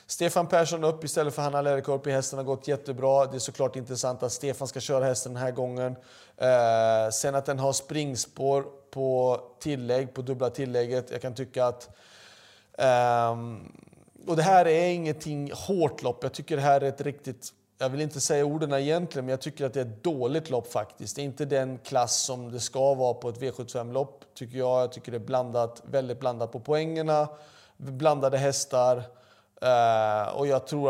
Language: Swedish